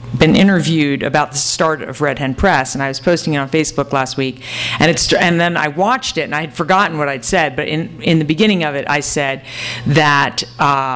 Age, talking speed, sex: 50-69, 235 wpm, female